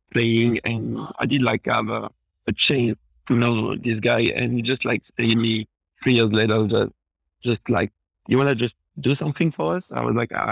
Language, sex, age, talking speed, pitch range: English, male, 50-69, 210 wpm, 110-120 Hz